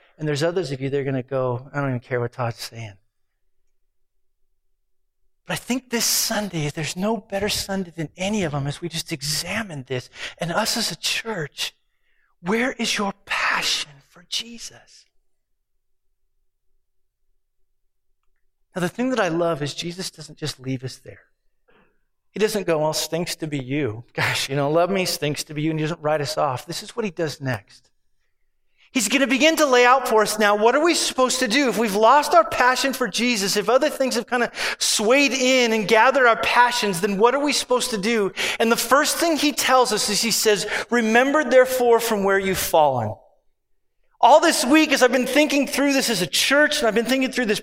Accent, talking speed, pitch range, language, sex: American, 205 wpm, 170-255 Hz, English, male